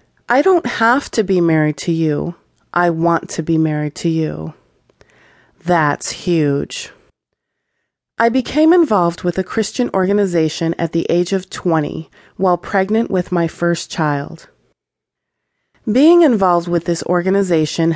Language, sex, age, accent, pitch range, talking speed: English, female, 30-49, American, 165-205 Hz, 135 wpm